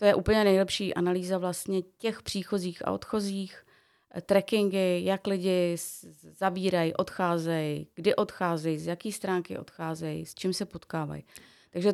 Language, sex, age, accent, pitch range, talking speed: Czech, female, 30-49, native, 175-215 Hz, 130 wpm